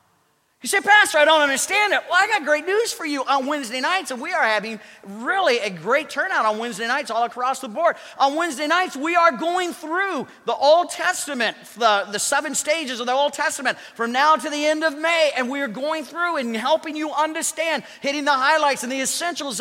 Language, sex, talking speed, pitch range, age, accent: English, male, 215 wpm, 255-335 Hz, 40-59, American